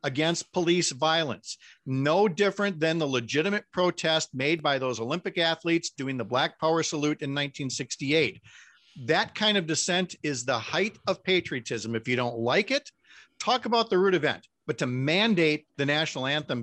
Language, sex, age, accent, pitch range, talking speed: English, male, 50-69, American, 135-185 Hz, 165 wpm